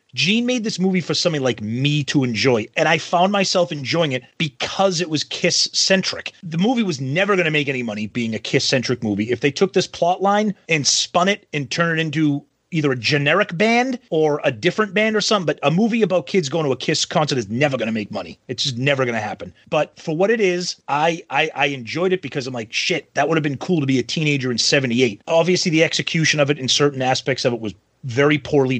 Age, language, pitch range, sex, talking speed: 30-49, English, 130-180 Hz, male, 245 wpm